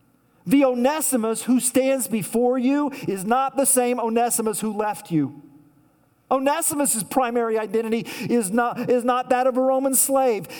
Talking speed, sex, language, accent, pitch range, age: 140 wpm, male, English, American, 150-235 Hz, 40-59